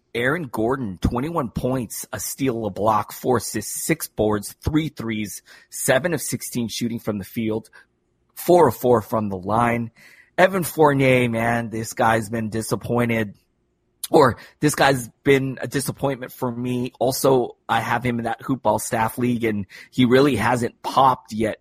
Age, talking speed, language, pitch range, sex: 30-49, 160 wpm, English, 110-140 Hz, male